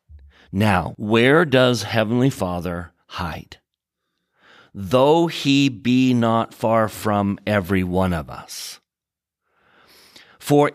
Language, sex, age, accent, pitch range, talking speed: English, male, 40-59, American, 95-120 Hz, 95 wpm